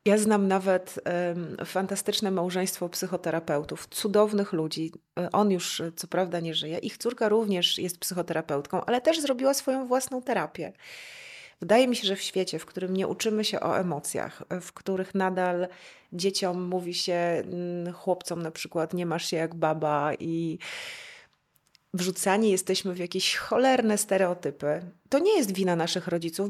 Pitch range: 170-200 Hz